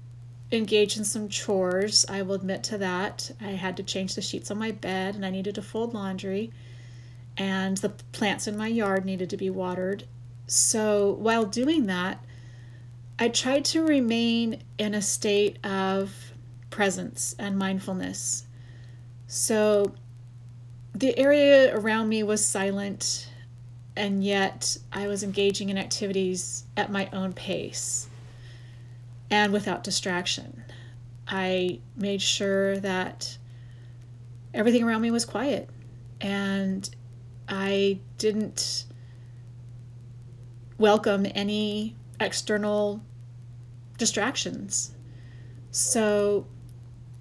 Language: English